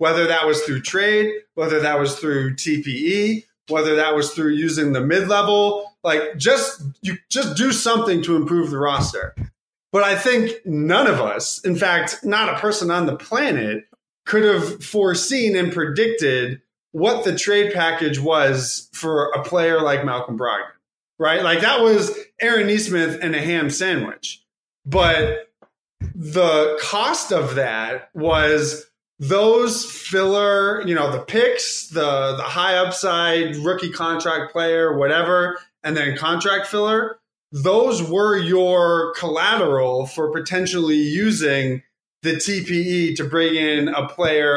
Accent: American